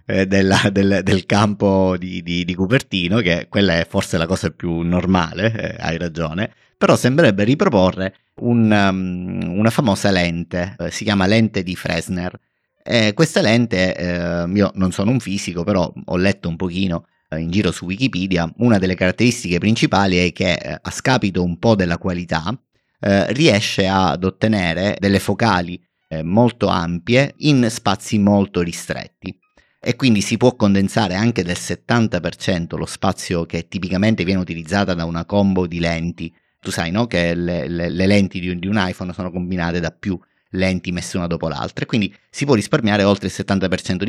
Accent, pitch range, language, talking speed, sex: native, 90-105 Hz, Italian, 170 wpm, male